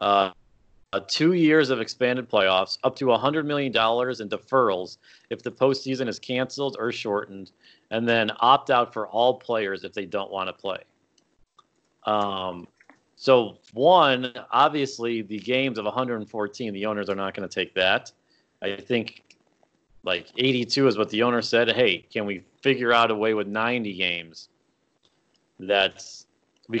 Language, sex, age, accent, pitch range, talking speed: English, male, 40-59, American, 105-130 Hz, 150 wpm